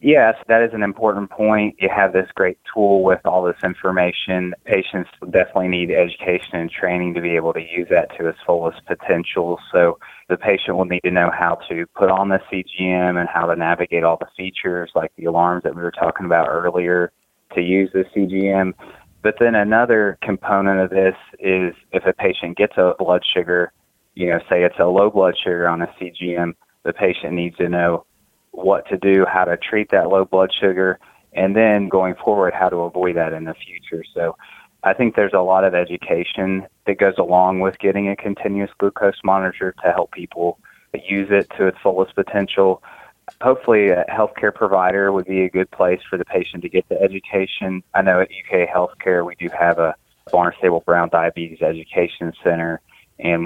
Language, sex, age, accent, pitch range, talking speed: English, male, 20-39, American, 85-95 Hz, 195 wpm